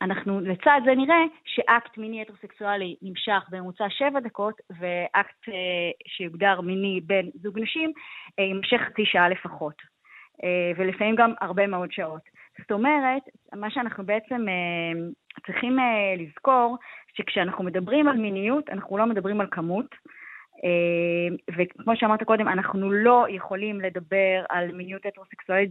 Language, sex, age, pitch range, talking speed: Hebrew, female, 20-39, 185-230 Hz, 125 wpm